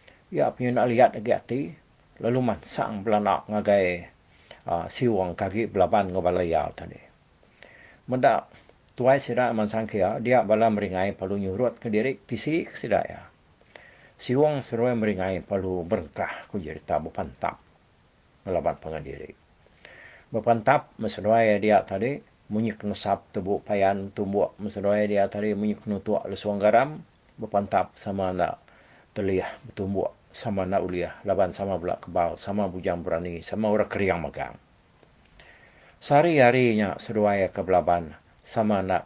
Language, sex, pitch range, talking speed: English, male, 90-110 Hz, 130 wpm